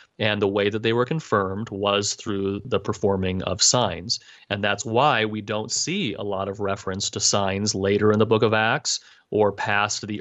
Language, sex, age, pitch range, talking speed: English, male, 30-49, 100-120 Hz, 200 wpm